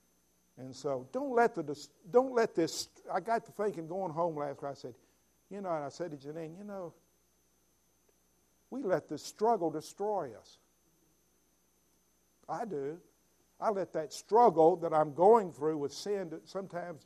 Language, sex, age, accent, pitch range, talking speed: English, male, 50-69, American, 130-185 Hz, 160 wpm